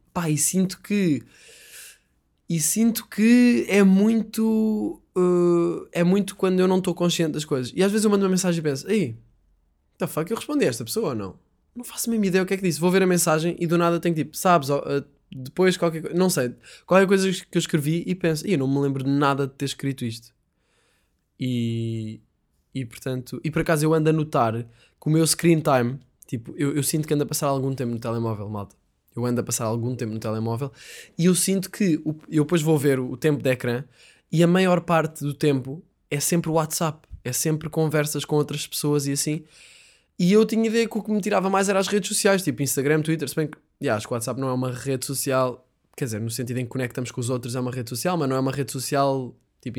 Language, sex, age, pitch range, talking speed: Portuguese, male, 20-39, 125-180 Hz, 245 wpm